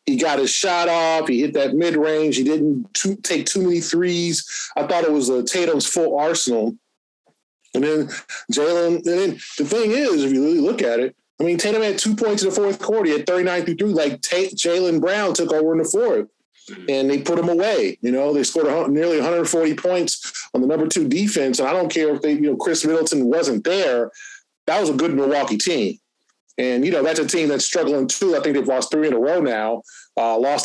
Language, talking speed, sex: English, 235 wpm, male